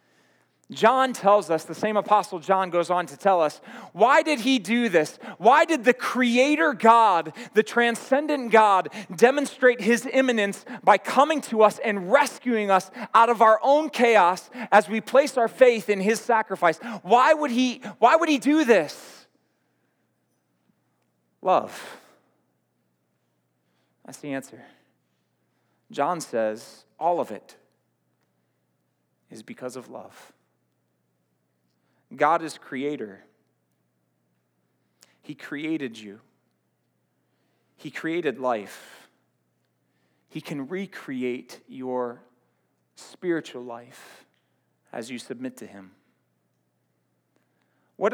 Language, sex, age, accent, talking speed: English, male, 30-49, American, 110 wpm